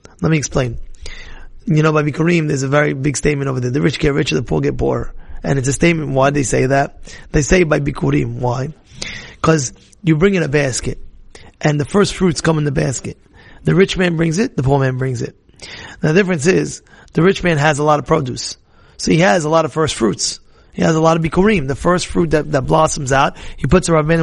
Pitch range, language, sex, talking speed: 140-170 Hz, English, male, 235 wpm